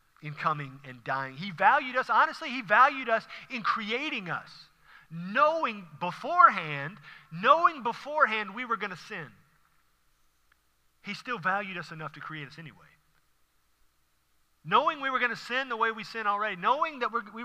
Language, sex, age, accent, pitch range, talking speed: English, male, 40-59, American, 140-230 Hz, 160 wpm